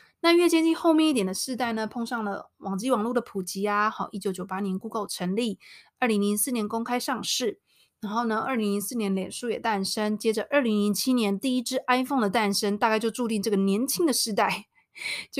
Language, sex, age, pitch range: Chinese, female, 20-39, 195-245 Hz